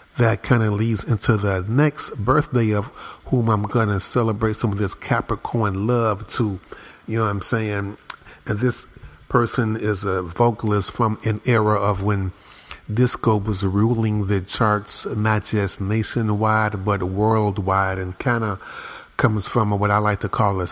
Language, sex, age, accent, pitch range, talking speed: English, male, 40-59, American, 95-110 Hz, 160 wpm